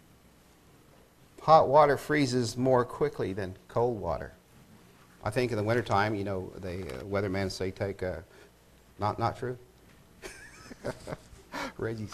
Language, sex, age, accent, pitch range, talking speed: English, male, 50-69, American, 90-130 Hz, 130 wpm